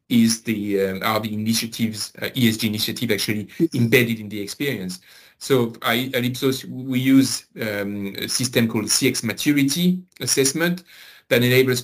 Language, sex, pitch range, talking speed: English, male, 110-130 Hz, 145 wpm